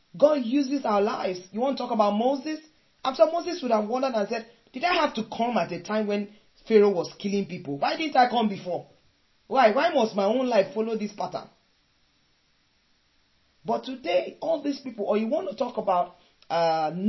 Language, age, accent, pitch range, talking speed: English, 40-59, Nigerian, 190-255 Hz, 195 wpm